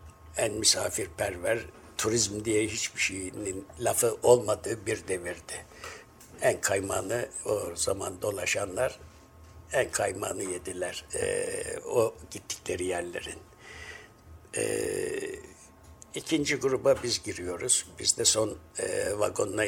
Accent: native